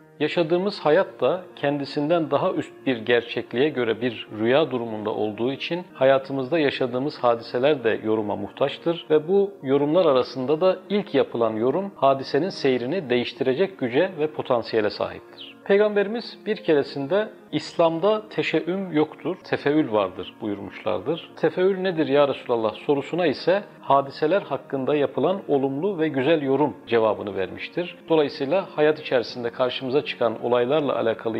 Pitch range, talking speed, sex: 130-175 Hz, 125 wpm, male